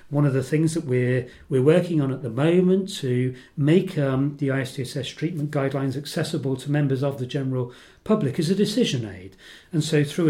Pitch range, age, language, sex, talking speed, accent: 130-165 Hz, 40-59, English, male, 190 wpm, British